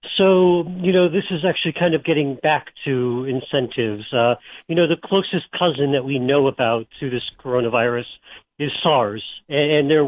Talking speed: 175 wpm